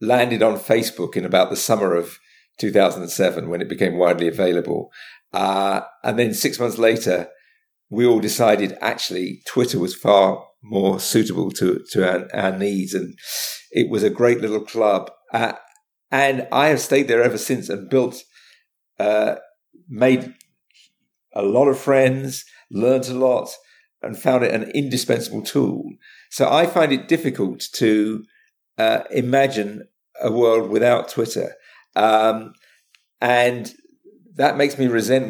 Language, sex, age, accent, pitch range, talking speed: English, male, 50-69, British, 110-150 Hz, 145 wpm